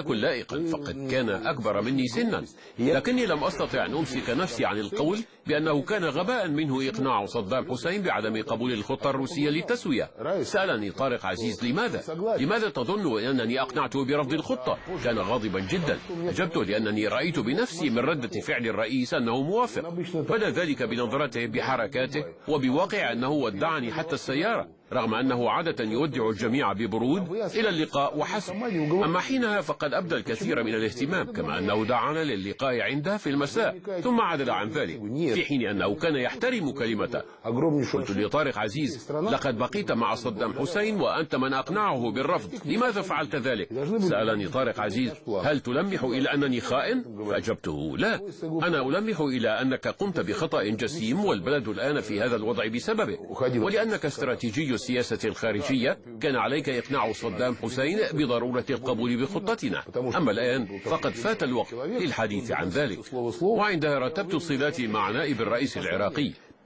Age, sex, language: 50-69, male, English